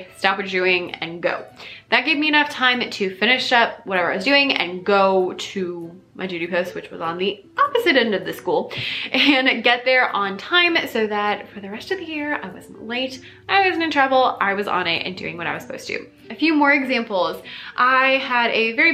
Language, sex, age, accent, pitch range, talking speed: English, female, 20-39, American, 190-265 Hz, 230 wpm